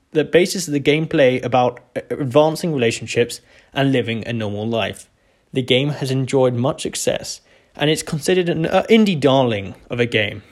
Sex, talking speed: male, 165 wpm